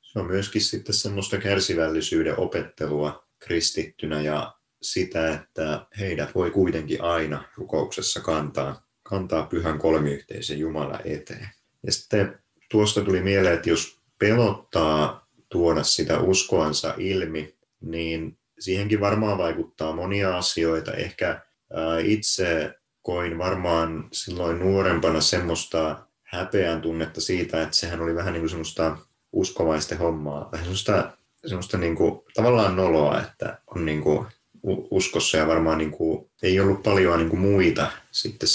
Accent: native